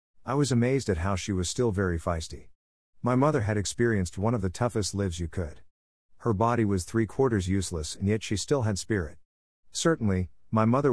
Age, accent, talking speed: 50-69, American, 190 wpm